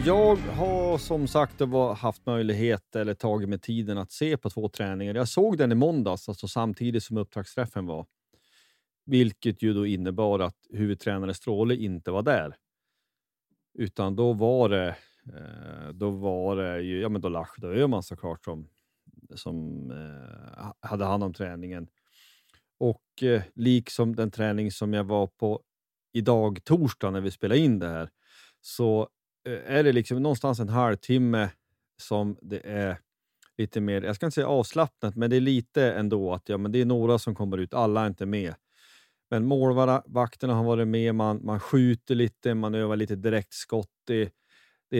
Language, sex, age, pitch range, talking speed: Swedish, male, 30-49, 100-120 Hz, 160 wpm